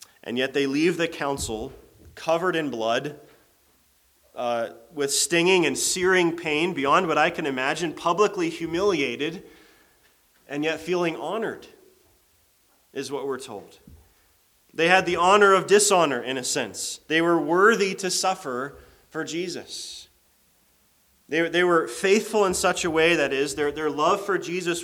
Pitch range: 140-180 Hz